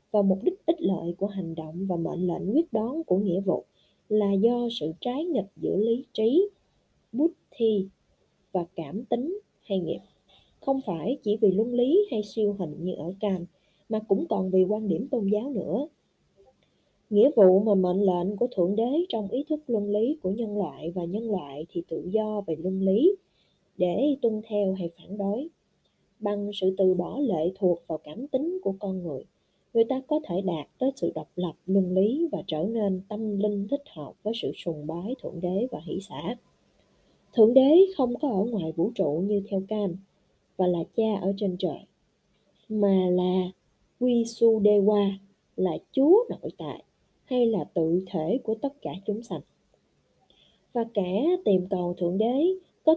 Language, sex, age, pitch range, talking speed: Vietnamese, female, 20-39, 185-245 Hz, 185 wpm